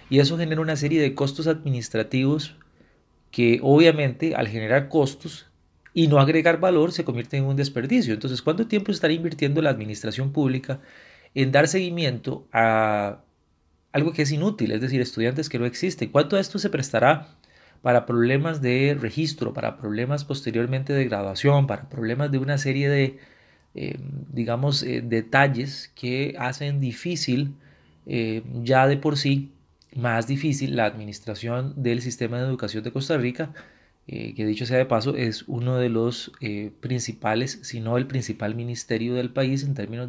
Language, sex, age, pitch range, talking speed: Spanish, male, 30-49, 115-140 Hz, 160 wpm